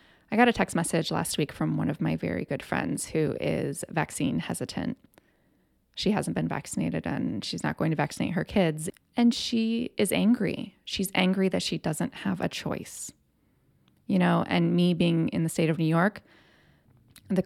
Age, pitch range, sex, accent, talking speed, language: 20-39, 165-225 Hz, female, American, 185 wpm, English